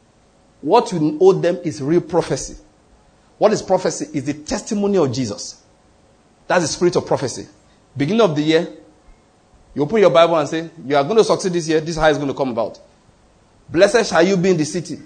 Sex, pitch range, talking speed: male, 135-195 Hz, 210 wpm